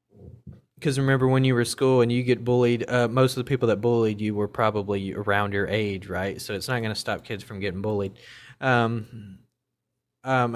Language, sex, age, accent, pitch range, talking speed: English, male, 20-39, American, 100-120 Hz, 205 wpm